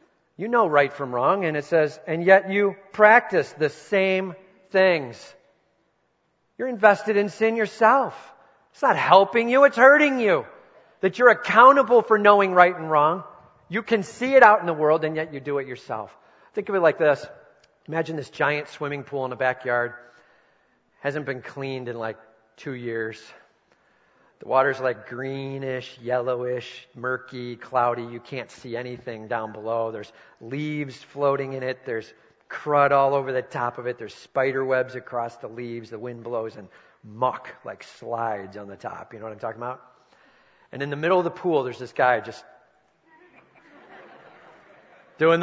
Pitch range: 125-195 Hz